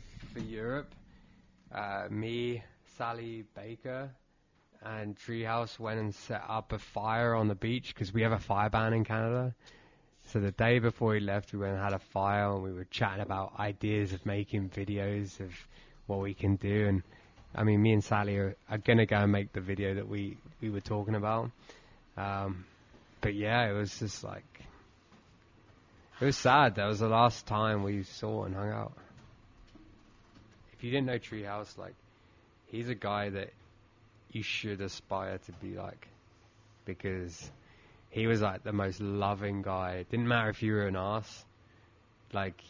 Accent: British